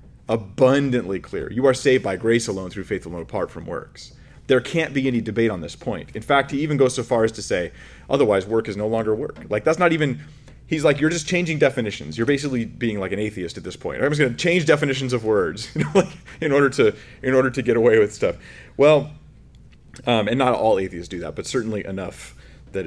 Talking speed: 225 wpm